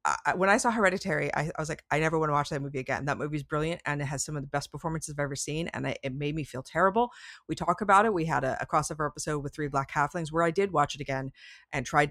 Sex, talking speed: female, 300 wpm